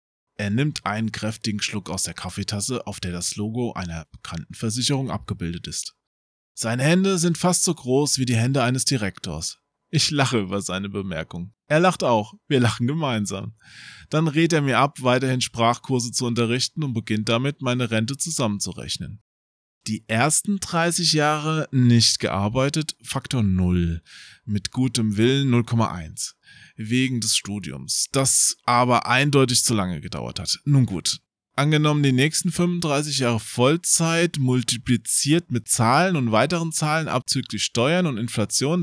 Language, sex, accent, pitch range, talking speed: German, male, German, 110-150 Hz, 145 wpm